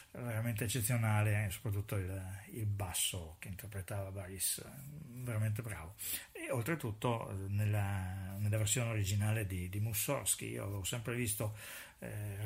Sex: male